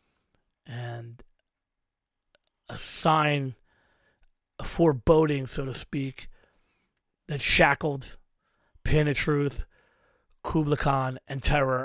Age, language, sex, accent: 30-49, English, male, American